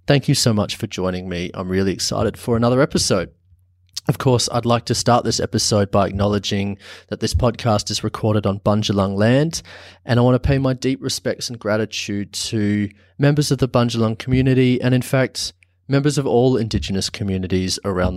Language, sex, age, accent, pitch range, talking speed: English, male, 30-49, Australian, 95-125 Hz, 185 wpm